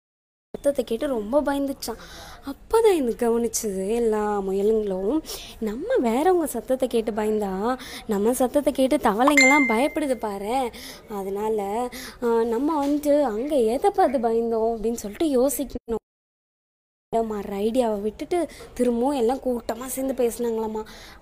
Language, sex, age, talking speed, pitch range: Tamil, female, 20-39, 105 wpm, 225-280 Hz